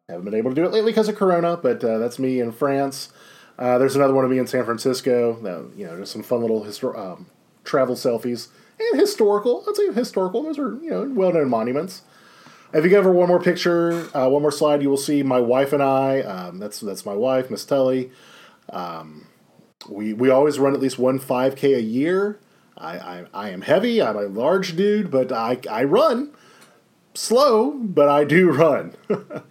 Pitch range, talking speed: 120-155 Hz, 205 wpm